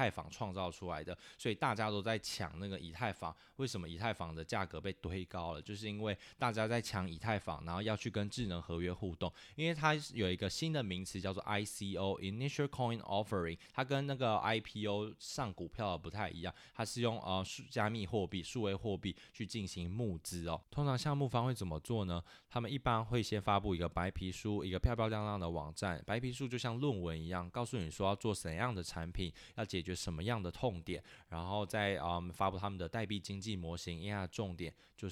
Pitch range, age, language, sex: 90-110 Hz, 20-39, Chinese, male